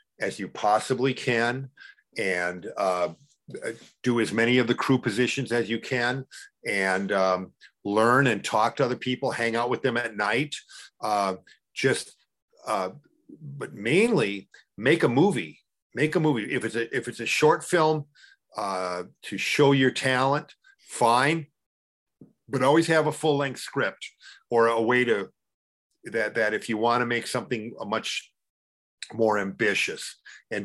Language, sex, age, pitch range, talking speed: English, male, 50-69, 105-135 Hz, 155 wpm